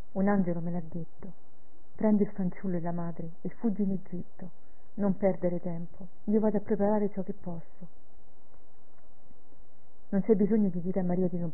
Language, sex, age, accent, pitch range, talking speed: Italian, female, 40-59, native, 170-200 Hz, 175 wpm